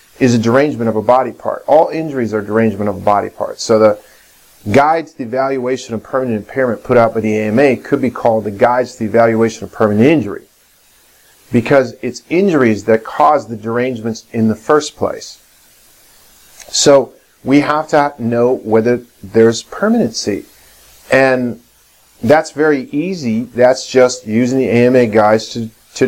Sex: male